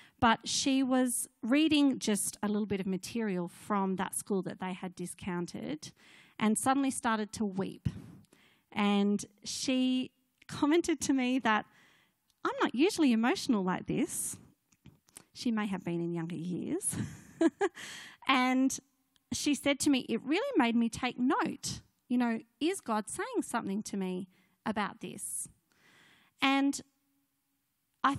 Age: 30-49